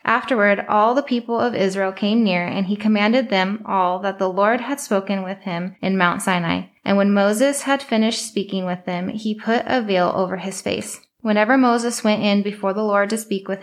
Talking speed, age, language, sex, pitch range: 210 wpm, 10-29, English, female, 195-230 Hz